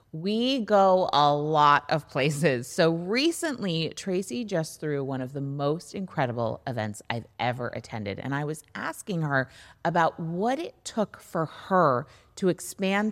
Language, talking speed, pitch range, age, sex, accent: English, 150 wpm, 140-190 Hz, 30-49, female, American